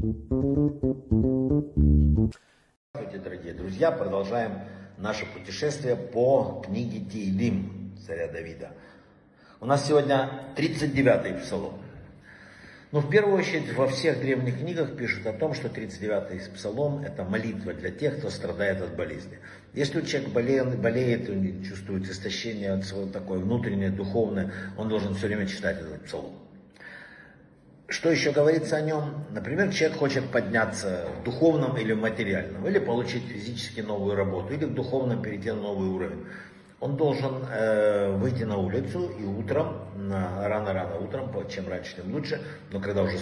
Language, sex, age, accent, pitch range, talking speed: Russian, male, 60-79, native, 100-140 Hz, 135 wpm